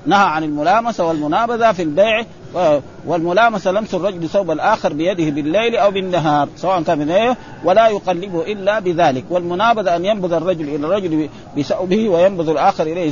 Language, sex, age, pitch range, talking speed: Arabic, male, 50-69, 155-195 Hz, 145 wpm